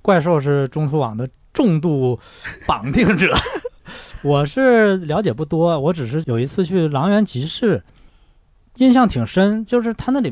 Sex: male